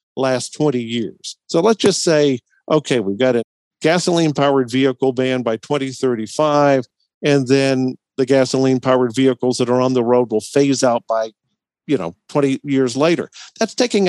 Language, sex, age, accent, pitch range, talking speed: English, male, 50-69, American, 125-150 Hz, 165 wpm